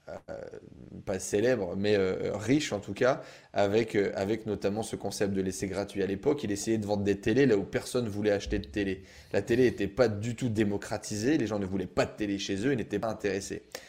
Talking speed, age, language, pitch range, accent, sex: 225 wpm, 20-39, French, 105-140 Hz, French, male